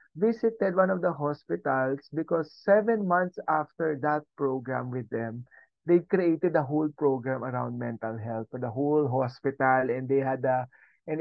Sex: male